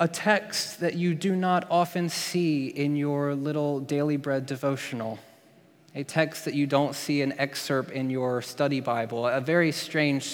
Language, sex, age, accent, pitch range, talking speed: English, male, 20-39, American, 125-140 Hz, 170 wpm